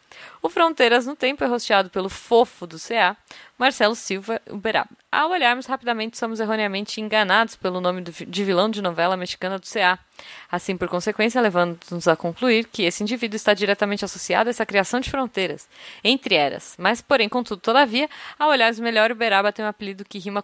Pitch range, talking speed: 185-240 Hz, 175 wpm